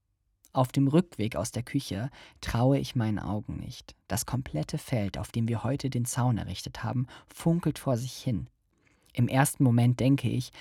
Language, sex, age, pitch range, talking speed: German, male, 40-59, 105-140 Hz, 175 wpm